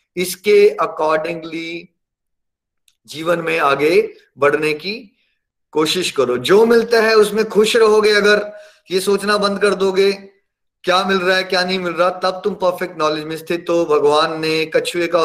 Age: 30-49